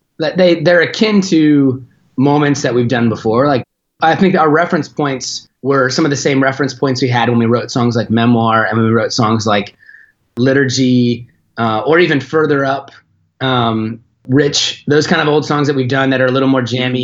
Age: 20-39